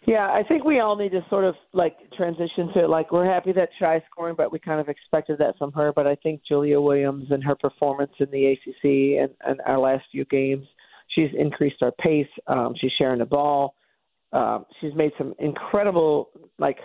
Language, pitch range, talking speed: English, 135-160 Hz, 205 wpm